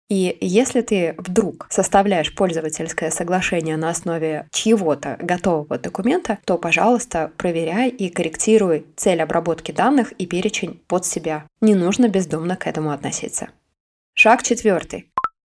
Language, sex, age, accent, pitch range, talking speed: Russian, female, 20-39, native, 170-215 Hz, 130 wpm